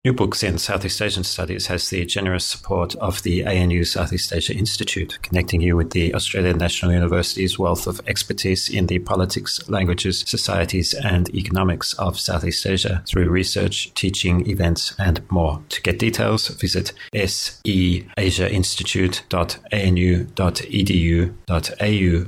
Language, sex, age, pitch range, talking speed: English, male, 30-49, 90-95 Hz, 125 wpm